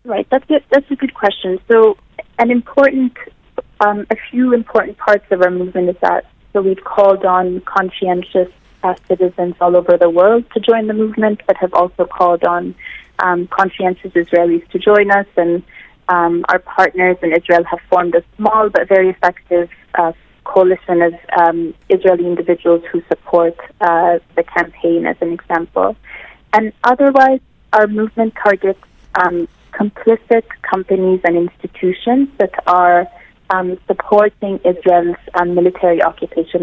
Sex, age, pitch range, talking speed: female, 30-49, 175-205 Hz, 150 wpm